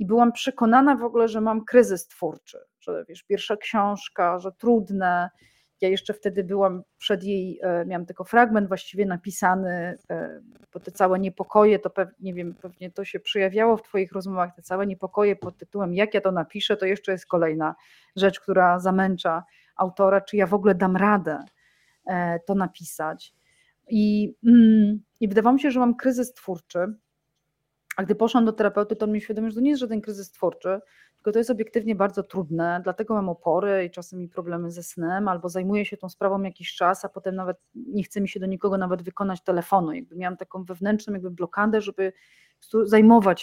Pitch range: 185-215 Hz